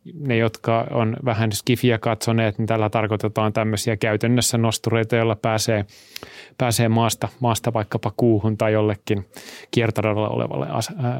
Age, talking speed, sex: 30-49, 125 wpm, male